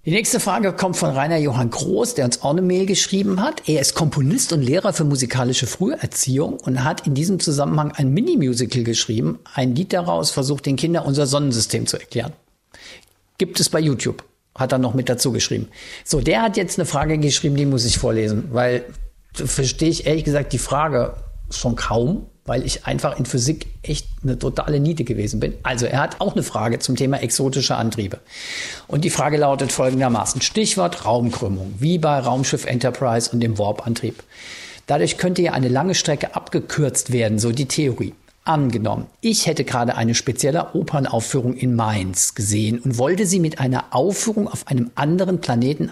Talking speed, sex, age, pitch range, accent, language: 180 wpm, male, 50-69, 120-155 Hz, German, German